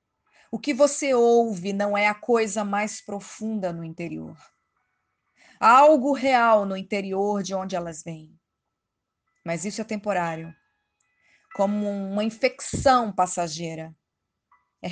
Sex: female